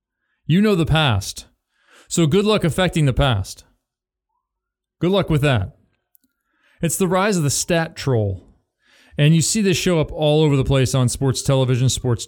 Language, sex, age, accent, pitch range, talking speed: English, male, 40-59, American, 120-165 Hz, 170 wpm